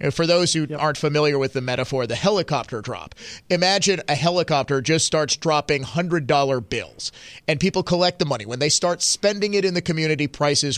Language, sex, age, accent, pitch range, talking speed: English, male, 30-49, American, 145-195 Hz, 185 wpm